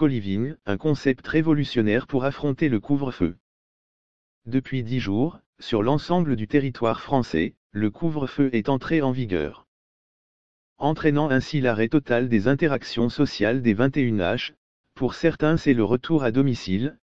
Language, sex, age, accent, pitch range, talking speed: French, male, 40-59, French, 110-145 Hz, 135 wpm